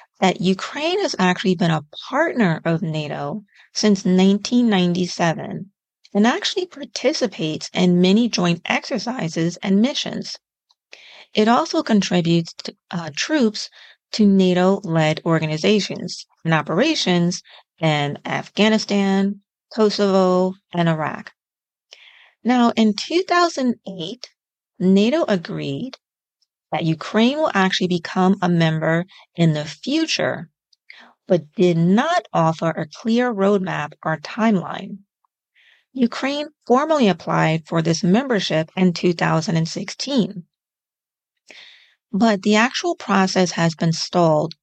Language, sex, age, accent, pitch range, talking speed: English, female, 40-59, American, 170-225 Hz, 100 wpm